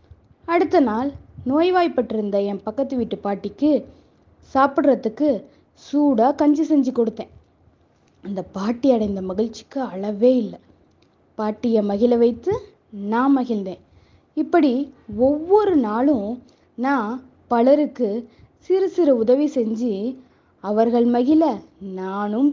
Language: Tamil